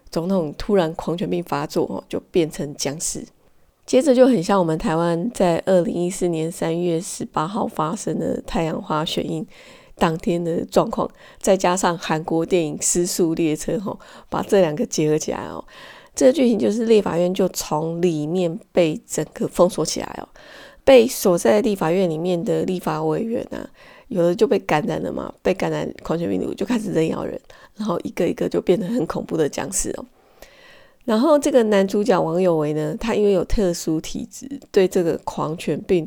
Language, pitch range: Chinese, 165-205 Hz